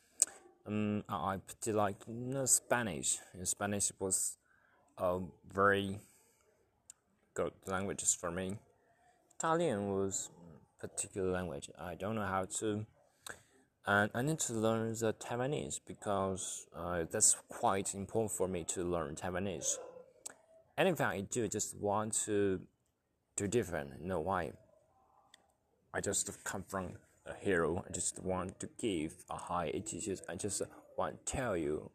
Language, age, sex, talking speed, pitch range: English, 20-39, male, 135 wpm, 95-115 Hz